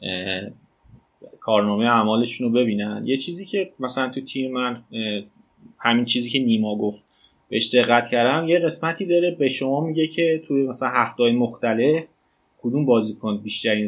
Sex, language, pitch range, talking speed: male, Persian, 115-145 Hz, 145 wpm